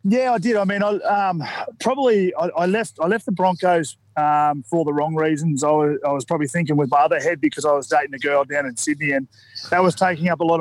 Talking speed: 260 wpm